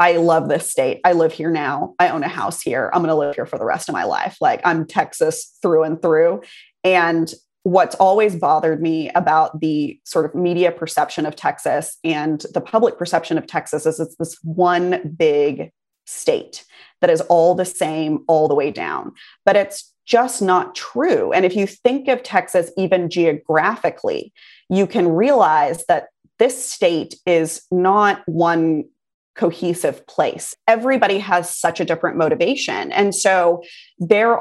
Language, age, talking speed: English, 30-49, 170 wpm